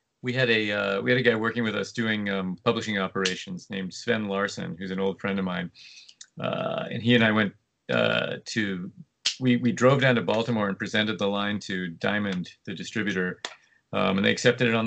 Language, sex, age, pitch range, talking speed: English, male, 40-59, 95-120 Hz, 210 wpm